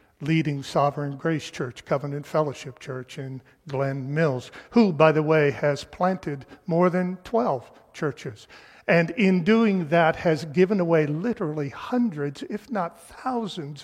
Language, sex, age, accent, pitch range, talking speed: English, male, 50-69, American, 135-165 Hz, 140 wpm